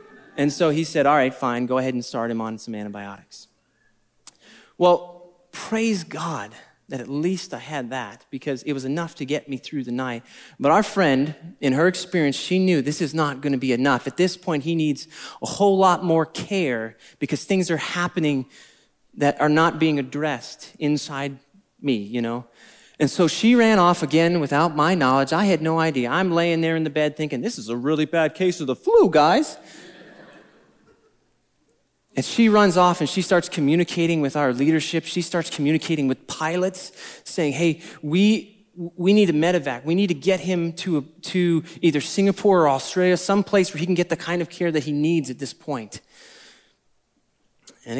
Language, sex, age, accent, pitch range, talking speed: English, male, 30-49, American, 140-180 Hz, 190 wpm